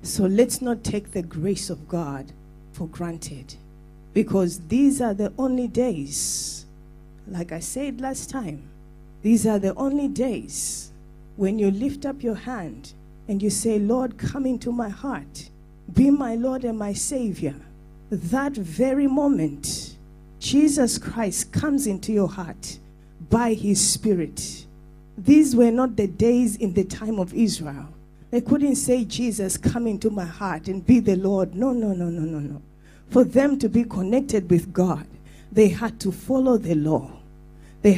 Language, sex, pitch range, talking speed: English, female, 175-240 Hz, 160 wpm